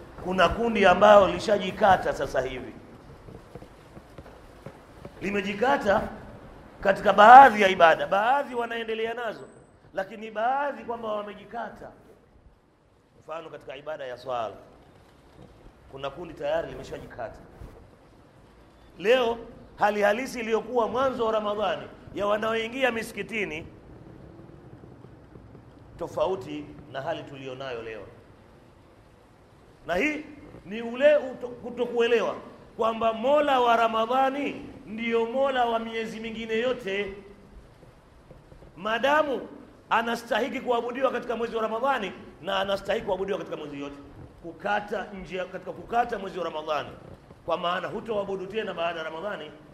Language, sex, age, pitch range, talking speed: Swahili, male, 40-59, 165-230 Hz, 100 wpm